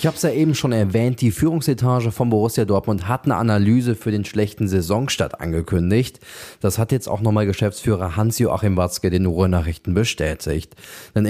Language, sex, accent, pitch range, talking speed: German, male, German, 100-125 Hz, 170 wpm